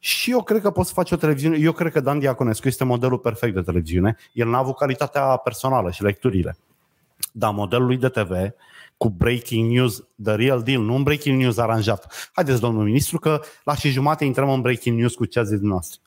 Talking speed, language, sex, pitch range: 215 wpm, Romanian, male, 120-175 Hz